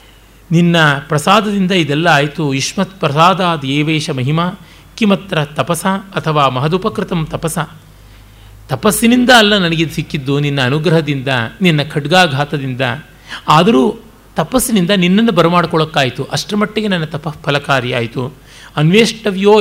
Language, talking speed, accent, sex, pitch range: Kannada, 90 wpm, native, male, 135-185 Hz